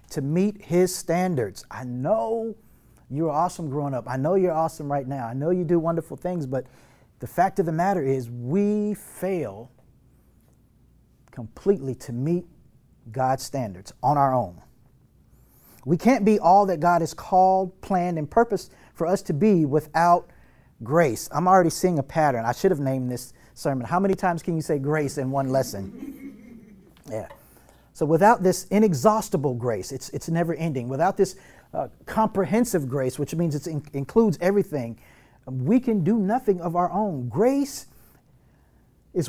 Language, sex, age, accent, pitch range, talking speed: English, male, 40-59, American, 135-190 Hz, 165 wpm